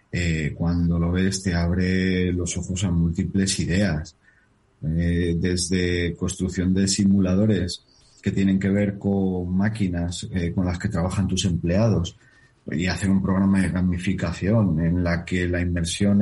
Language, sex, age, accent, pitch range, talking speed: Spanish, male, 40-59, Spanish, 90-105 Hz, 150 wpm